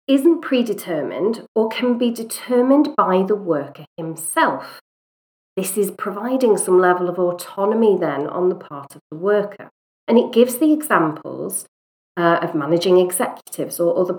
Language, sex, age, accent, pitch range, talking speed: English, female, 40-59, British, 170-220 Hz, 150 wpm